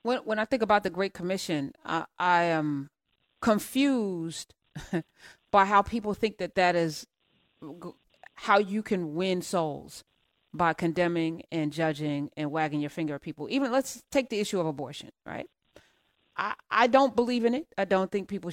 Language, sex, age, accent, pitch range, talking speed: English, female, 30-49, American, 175-255 Hz, 170 wpm